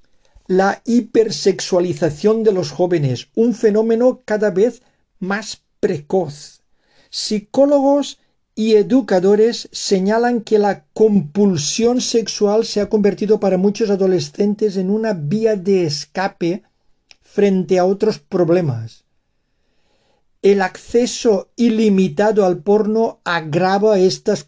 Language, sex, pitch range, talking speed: Spanish, male, 175-220 Hz, 100 wpm